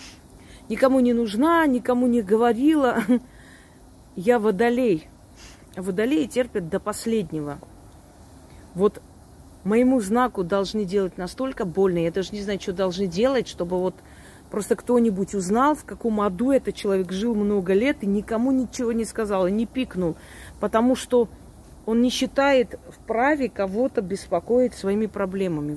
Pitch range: 185-235 Hz